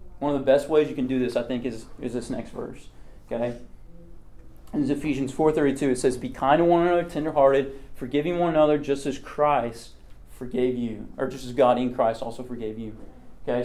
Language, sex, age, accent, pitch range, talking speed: English, male, 30-49, American, 115-135 Hz, 200 wpm